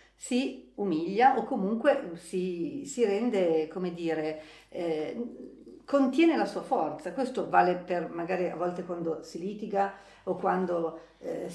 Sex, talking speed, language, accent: female, 135 wpm, Italian, native